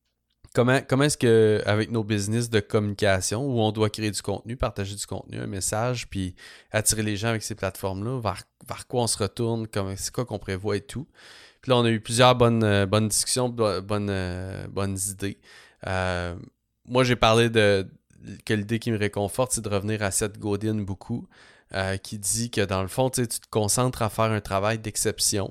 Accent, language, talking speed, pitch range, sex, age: Canadian, English, 195 wpm, 95-115 Hz, male, 20-39